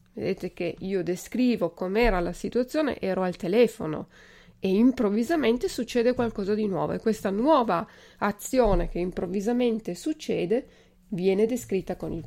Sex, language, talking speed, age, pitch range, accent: female, Italian, 130 wpm, 30-49, 185-245 Hz, native